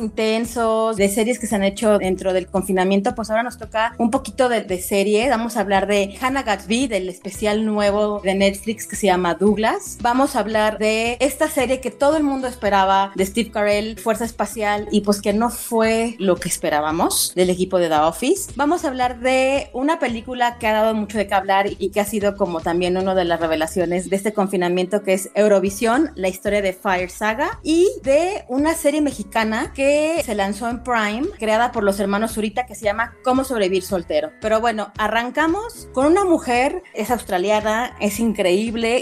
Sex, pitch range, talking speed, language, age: female, 195-240 Hz, 195 wpm, Spanish, 30-49